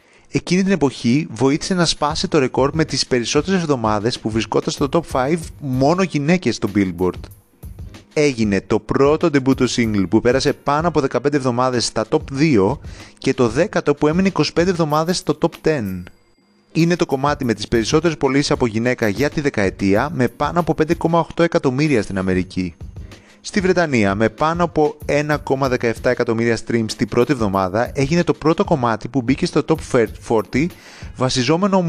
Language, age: Greek, 30-49